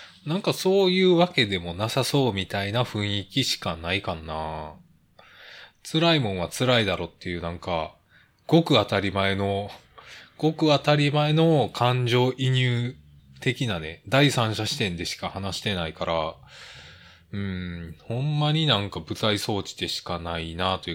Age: 20-39